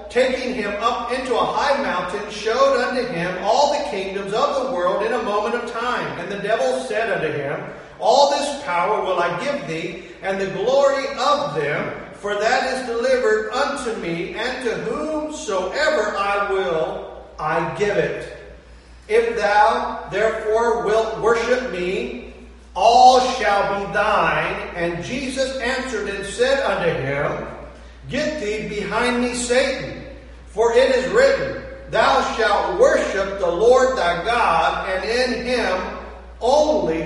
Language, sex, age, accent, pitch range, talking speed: English, male, 50-69, American, 205-260 Hz, 145 wpm